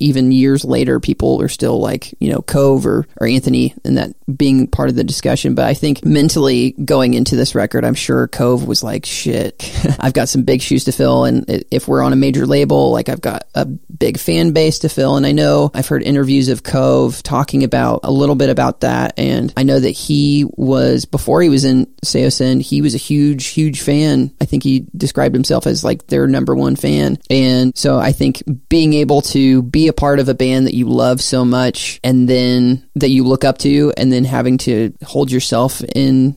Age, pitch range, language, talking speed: 30-49, 120-145 Hz, English, 220 wpm